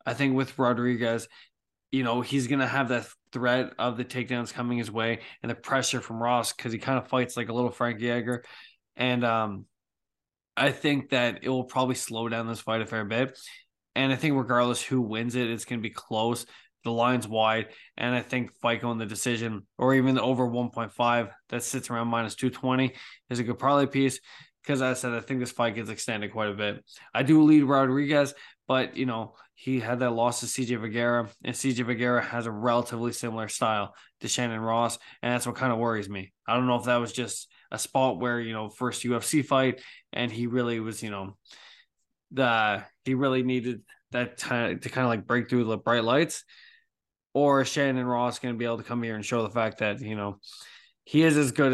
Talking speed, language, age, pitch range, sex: 215 wpm, English, 20-39, 115-130 Hz, male